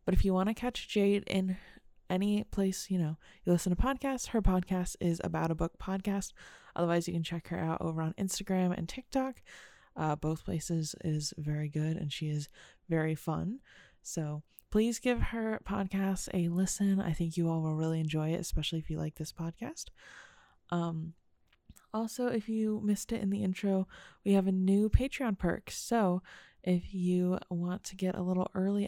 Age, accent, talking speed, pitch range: 20-39, American, 185 wpm, 165-200 Hz